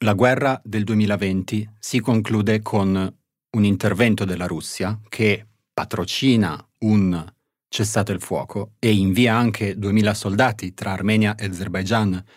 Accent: native